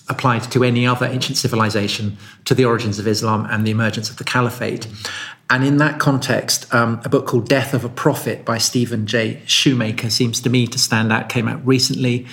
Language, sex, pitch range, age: English, male, 110-130 Hz, 40-59